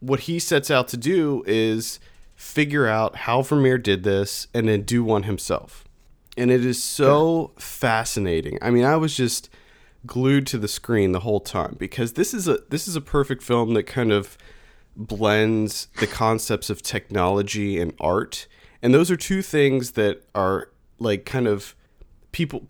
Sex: male